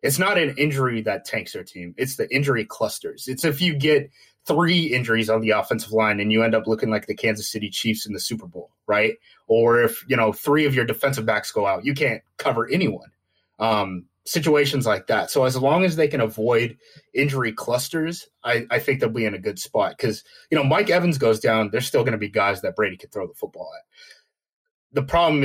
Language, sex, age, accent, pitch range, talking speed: English, male, 20-39, American, 110-140 Hz, 225 wpm